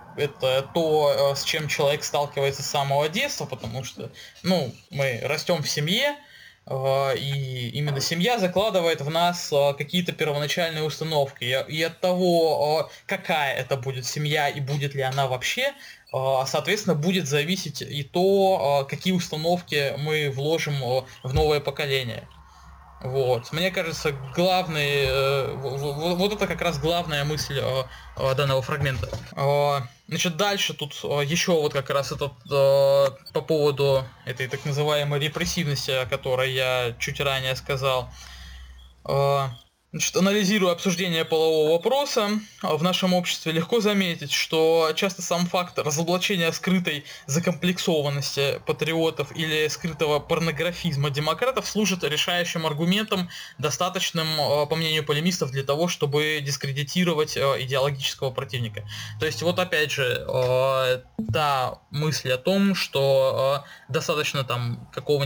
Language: Russian